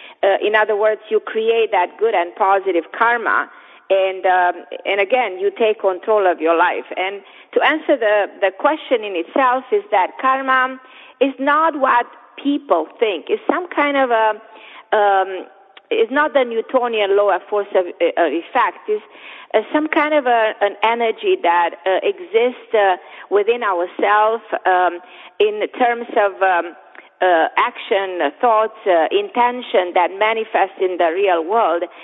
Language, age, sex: English, 40-59, female